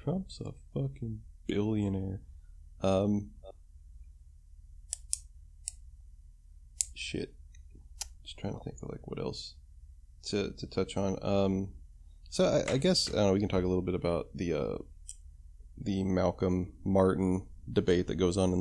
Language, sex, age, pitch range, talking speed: English, male, 20-39, 70-100 Hz, 130 wpm